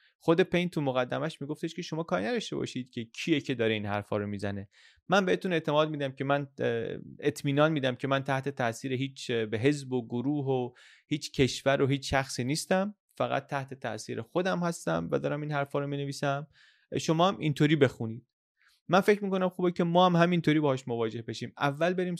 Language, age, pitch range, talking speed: Persian, 30-49, 125-170 Hz, 190 wpm